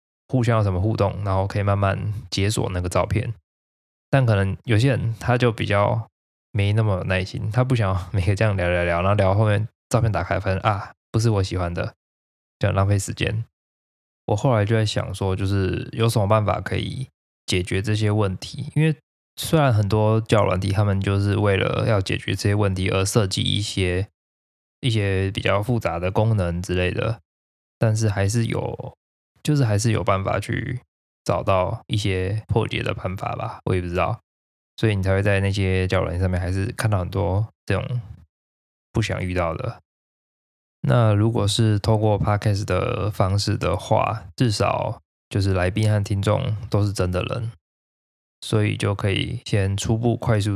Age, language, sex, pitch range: 20-39, Chinese, male, 95-115 Hz